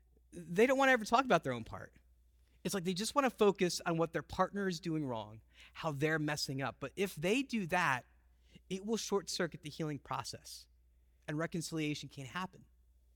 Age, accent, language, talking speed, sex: 30-49, American, English, 195 wpm, male